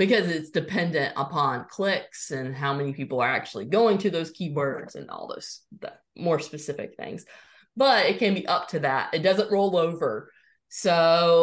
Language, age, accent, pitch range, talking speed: English, 20-39, American, 150-195 Hz, 180 wpm